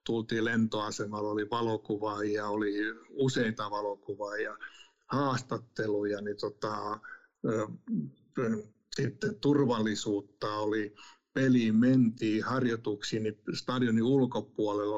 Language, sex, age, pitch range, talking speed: Finnish, male, 60-79, 105-125 Hz, 85 wpm